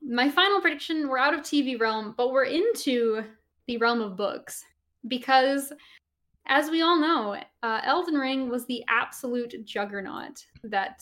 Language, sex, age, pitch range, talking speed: English, female, 10-29, 220-275 Hz, 150 wpm